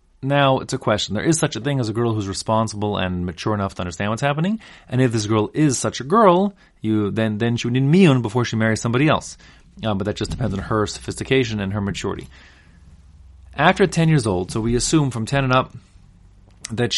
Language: English